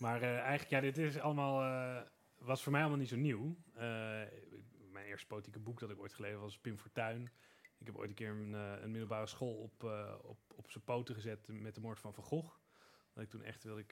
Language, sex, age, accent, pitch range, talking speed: Dutch, male, 30-49, Dutch, 105-125 Hz, 240 wpm